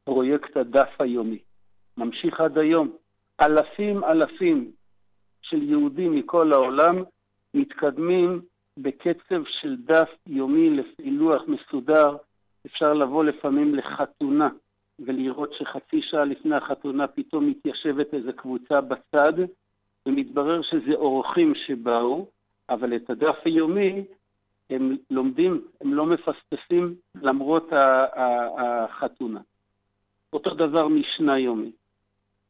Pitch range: 125-180 Hz